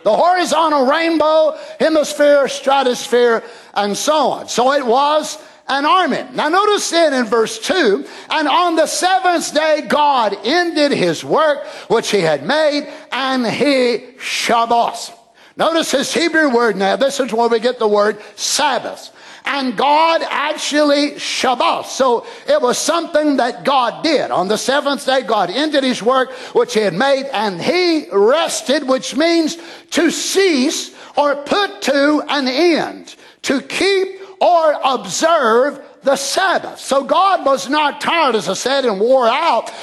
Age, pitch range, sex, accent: 60-79, 265-330 Hz, male, American